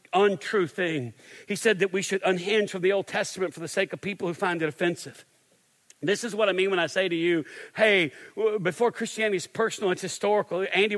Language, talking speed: English, 215 wpm